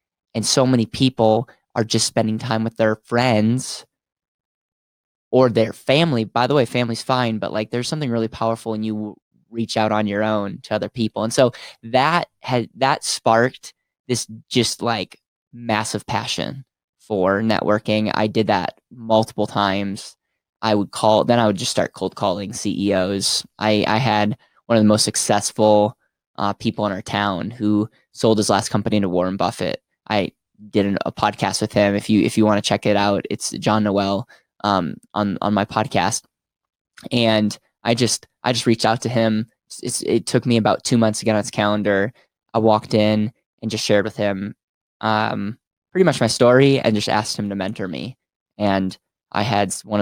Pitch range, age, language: 105-115 Hz, 10-29, English